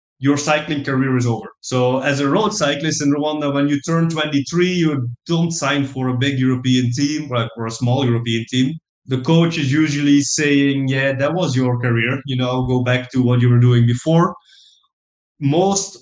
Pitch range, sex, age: 125-145 Hz, male, 20-39